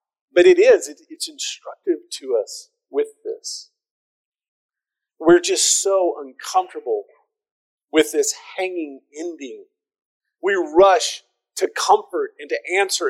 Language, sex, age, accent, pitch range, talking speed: English, male, 40-59, American, 330-440 Hz, 110 wpm